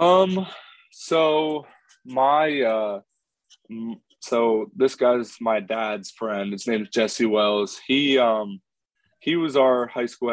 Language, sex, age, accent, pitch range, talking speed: English, male, 20-39, American, 105-120 Hz, 130 wpm